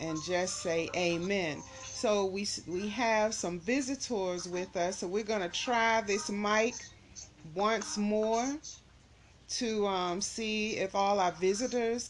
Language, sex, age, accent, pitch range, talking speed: English, female, 30-49, American, 185-235 Hz, 135 wpm